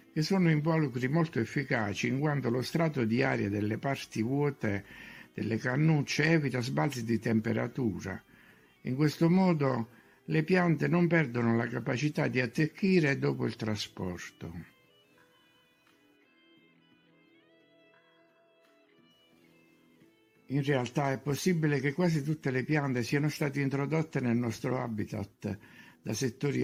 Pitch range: 110-150 Hz